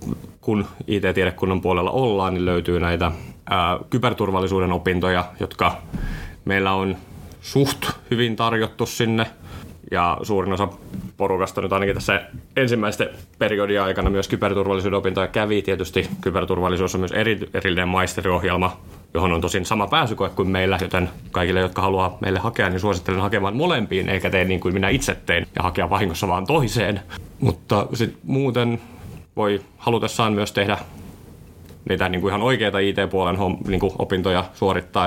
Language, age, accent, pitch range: Finnish, 30-49, native, 90-100 Hz